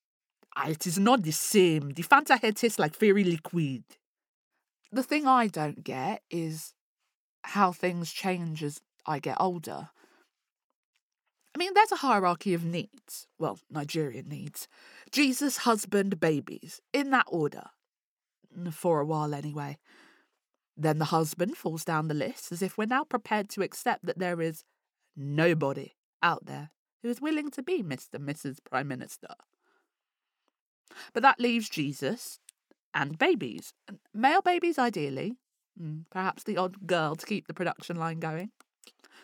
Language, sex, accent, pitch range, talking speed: English, female, British, 160-235 Hz, 145 wpm